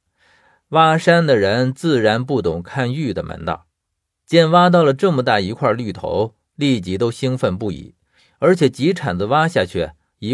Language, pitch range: Chinese, 100-160 Hz